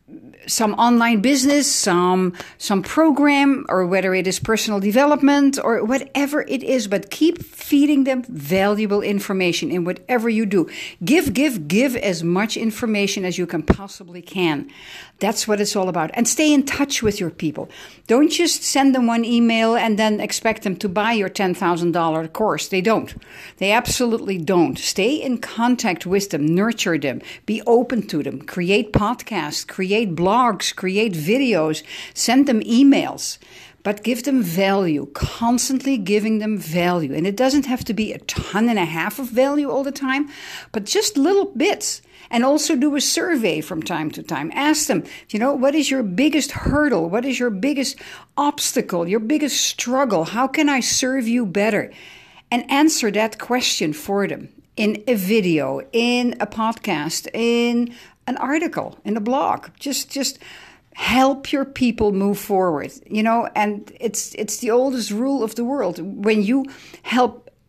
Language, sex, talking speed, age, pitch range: English, female, 165 wpm, 60-79, 195-265 Hz